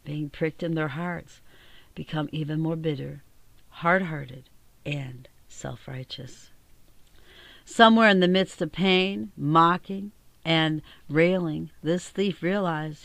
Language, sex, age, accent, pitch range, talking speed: English, female, 60-79, American, 135-170 Hz, 110 wpm